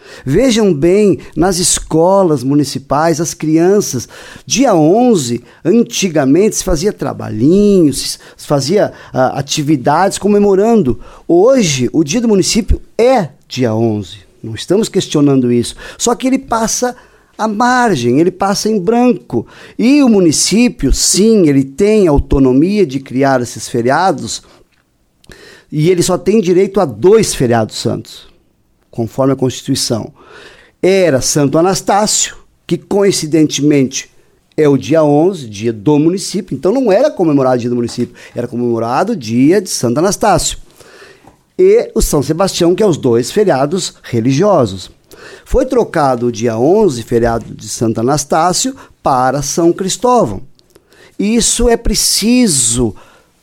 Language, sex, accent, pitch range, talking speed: Portuguese, male, Brazilian, 130-205 Hz, 125 wpm